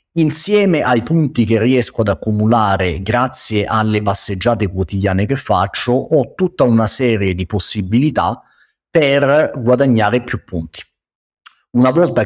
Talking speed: 120 wpm